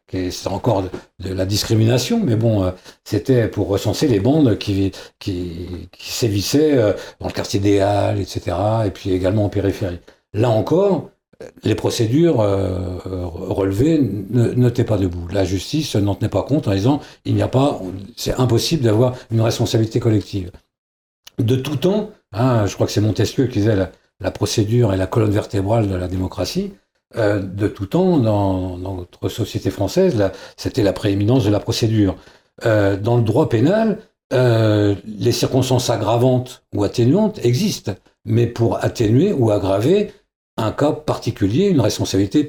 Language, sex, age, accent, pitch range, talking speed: French, male, 60-79, French, 100-130 Hz, 155 wpm